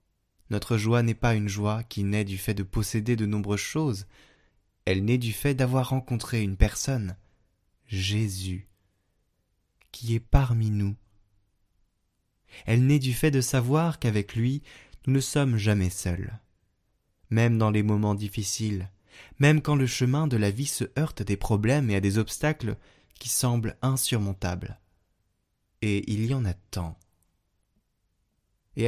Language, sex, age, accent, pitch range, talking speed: French, male, 20-39, French, 95-120 Hz, 150 wpm